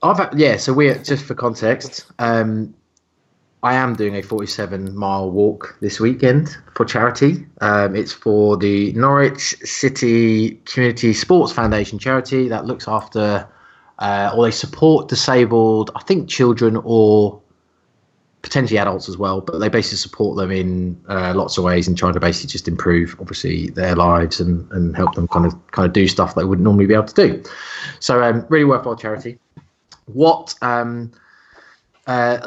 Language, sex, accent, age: English, male, British, 20-39